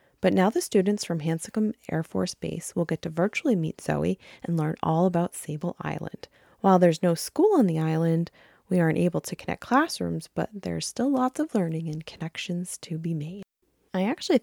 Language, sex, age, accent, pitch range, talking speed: English, female, 20-39, American, 160-205 Hz, 195 wpm